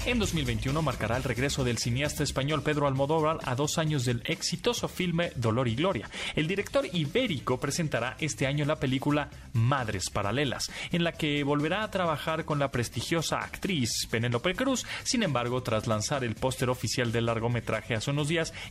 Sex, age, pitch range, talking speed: male, 30-49, 115-160 Hz, 170 wpm